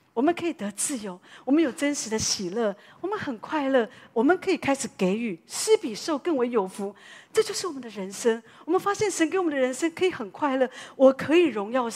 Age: 40-59